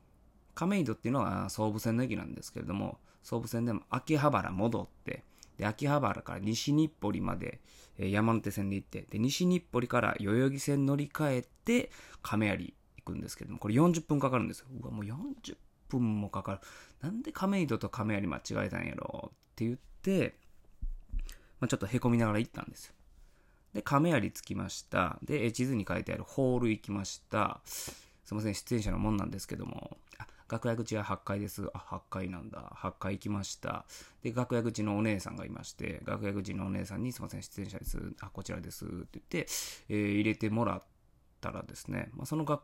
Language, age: Japanese, 20-39